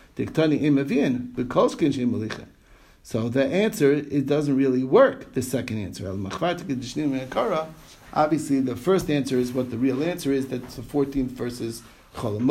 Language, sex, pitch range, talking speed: English, male, 125-160 Hz, 120 wpm